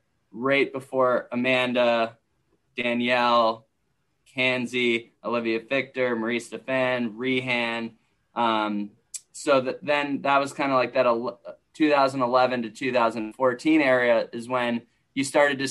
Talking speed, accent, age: 115 wpm, American, 20-39